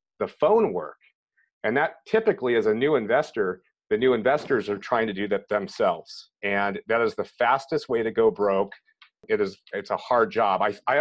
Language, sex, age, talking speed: English, male, 40-59, 190 wpm